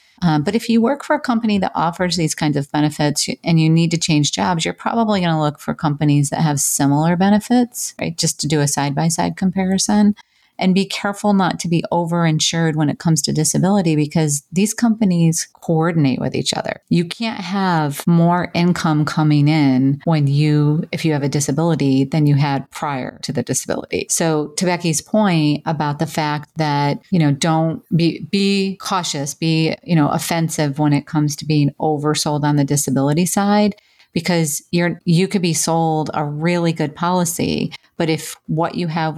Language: English